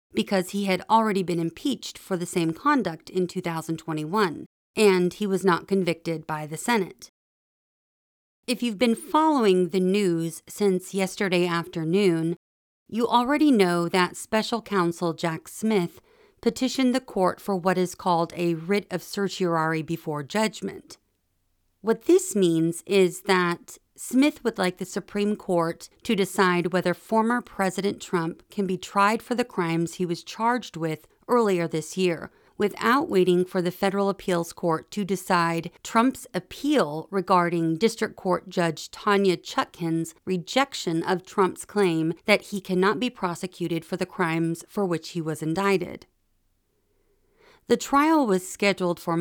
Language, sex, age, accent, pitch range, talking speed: English, female, 40-59, American, 170-210 Hz, 145 wpm